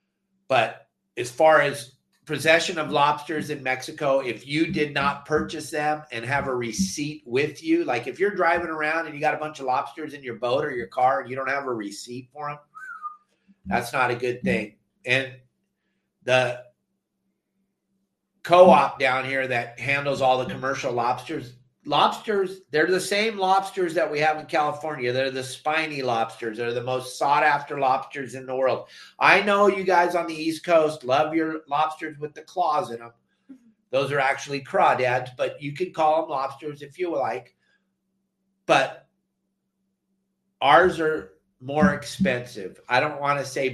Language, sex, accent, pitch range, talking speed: English, male, American, 130-180 Hz, 170 wpm